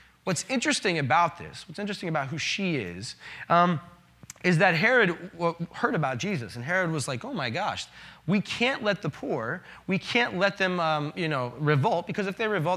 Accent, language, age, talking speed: American, English, 20-39, 195 wpm